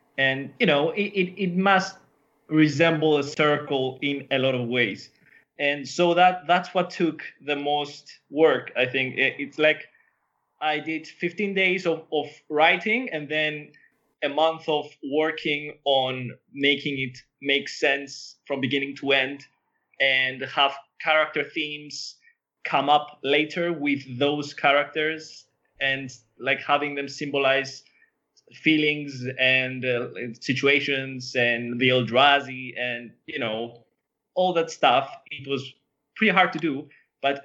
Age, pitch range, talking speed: 20-39, 130-155 Hz, 135 wpm